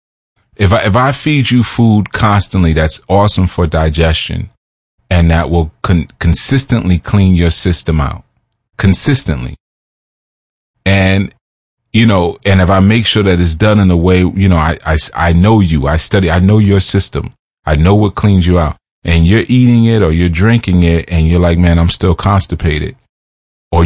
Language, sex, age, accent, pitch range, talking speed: English, male, 30-49, American, 80-105 Hz, 175 wpm